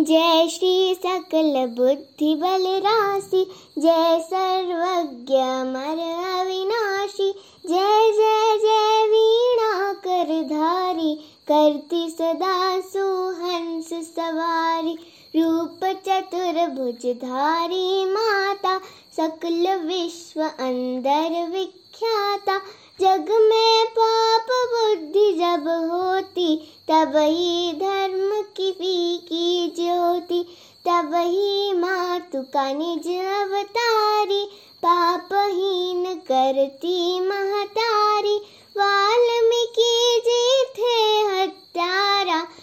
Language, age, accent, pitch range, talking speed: English, 20-39, Indian, 330-400 Hz, 75 wpm